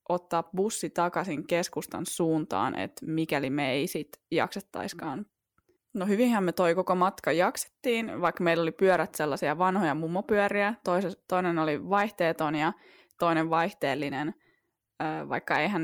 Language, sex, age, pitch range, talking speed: Finnish, female, 20-39, 155-185 Hz, 125 wpm